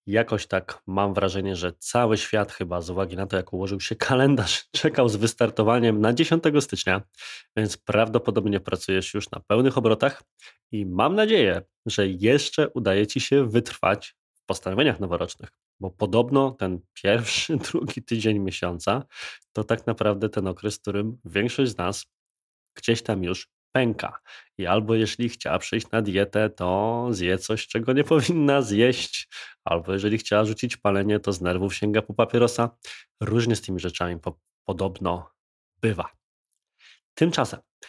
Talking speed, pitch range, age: 150 wpm, 95-120 Hz, 20-39